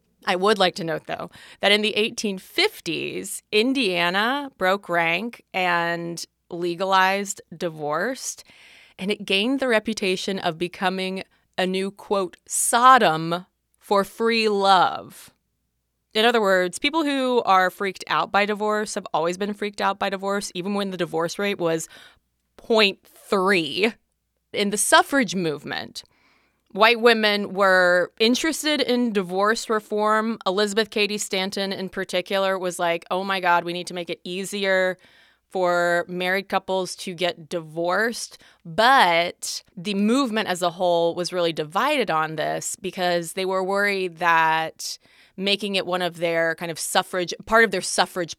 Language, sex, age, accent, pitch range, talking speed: English, female, 20-39, American, 180-225 Hz, 145 wpm